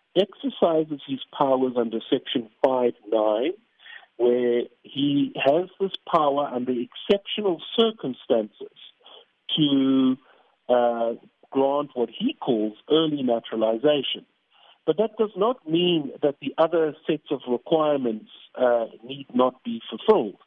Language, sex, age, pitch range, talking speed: English, male, 50-69, 125-195 Hz, 110 wpm